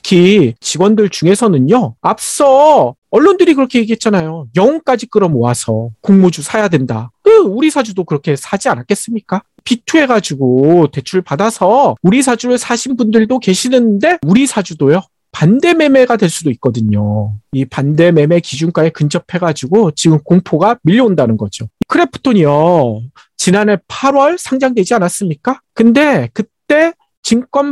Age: 40-59